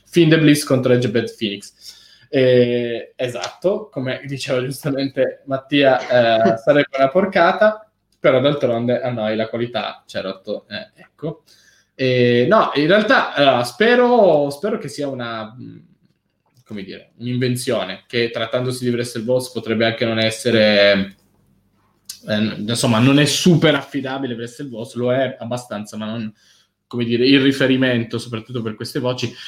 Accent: native